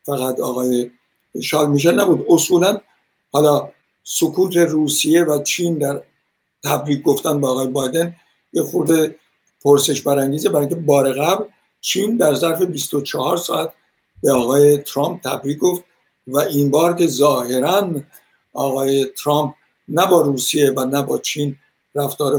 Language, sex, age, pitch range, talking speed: Persian, male, 60-79, 135-170 Hz, 130 wpm